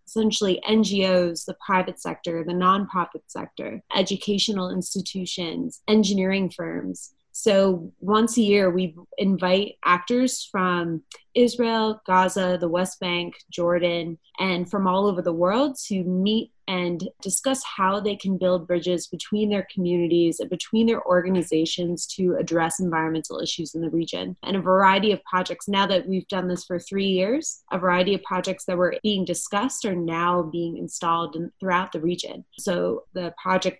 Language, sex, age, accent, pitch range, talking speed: English, female, 20-39, American, 175-195 Hz, 155 wpm